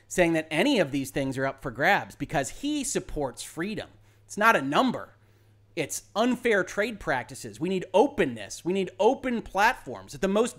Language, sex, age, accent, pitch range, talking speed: English, male, 30-49, American, 125-195 Hz, 180 wpm